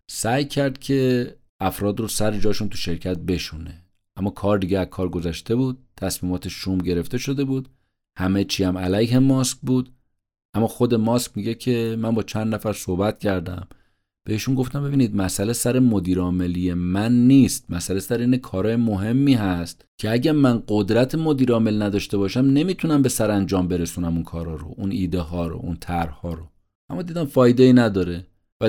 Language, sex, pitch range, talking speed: Persian, male, 95-125 Hz, 155 wpm